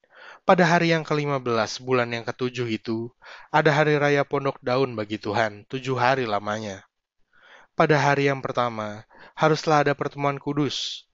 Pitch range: 115-145 Hz